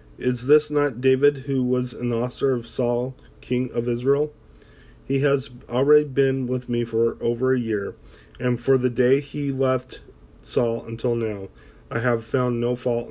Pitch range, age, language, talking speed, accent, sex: 110-135 Hz, 40-59, English, 170 wpm, American, male